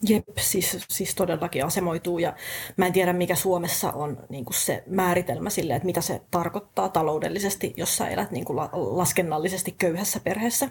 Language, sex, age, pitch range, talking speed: Finnish, female, 30-49, 165-190 Hz, 165 wpm